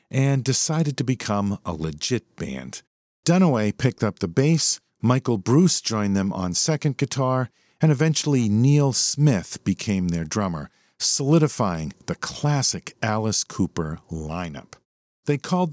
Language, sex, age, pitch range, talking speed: English, male, 50-69, 95-145 Hz, 130 wpm